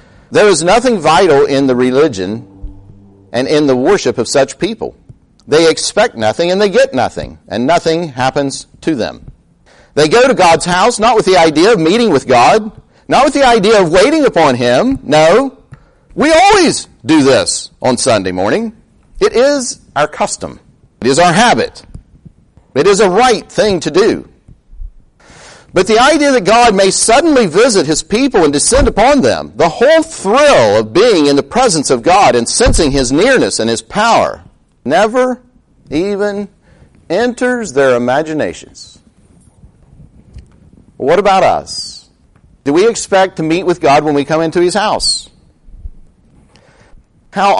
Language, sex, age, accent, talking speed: English, male, 50-69, American, 155 wpm